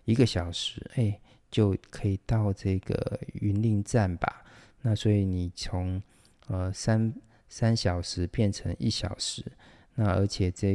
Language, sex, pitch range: Chinese, male, 95-115 Hz